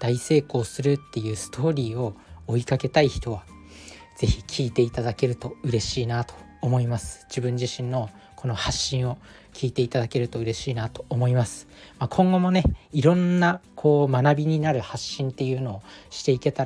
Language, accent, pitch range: Japanese, native, 110-140 Hz